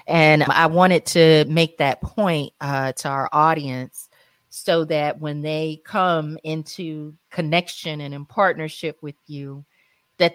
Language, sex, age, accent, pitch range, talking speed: English, female, 30-49, American, 140-185 Hz, 140 wpm